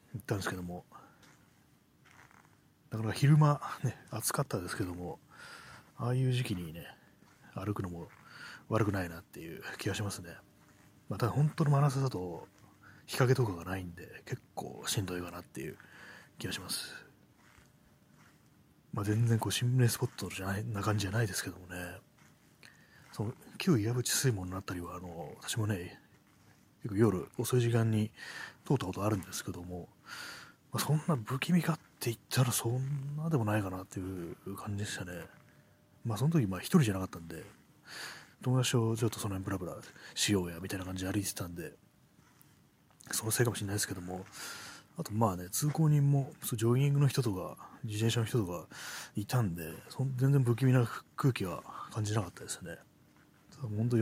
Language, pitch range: Japanese, 95-125 Hz